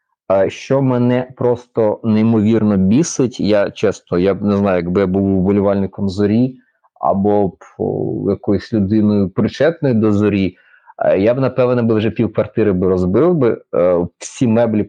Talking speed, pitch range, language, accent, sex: 130 wpm, 105-125 Hz, Ukrainian, native, male